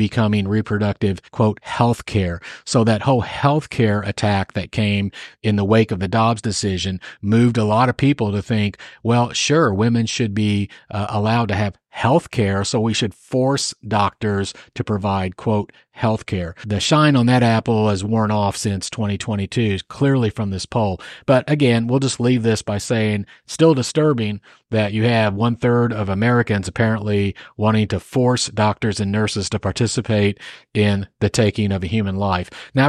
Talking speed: 170 wpm